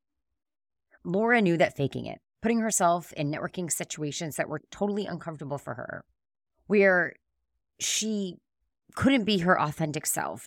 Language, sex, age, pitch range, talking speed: English, female, 30-49, 140-190 Hz, 130 wpm